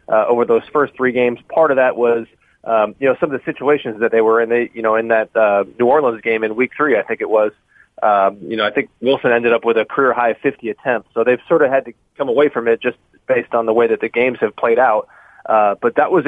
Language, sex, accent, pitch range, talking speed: English, male, American, 115-135 Hz, 285 wpm